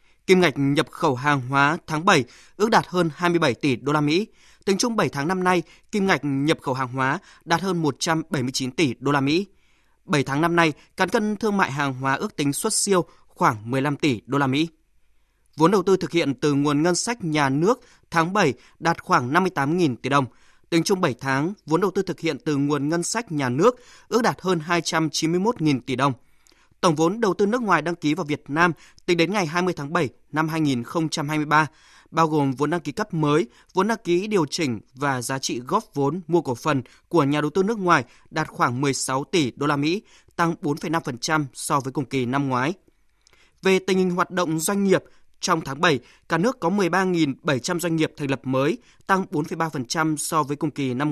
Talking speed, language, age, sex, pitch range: 210 wpm, Vietnamese, 20-39, male, 140-180 Hz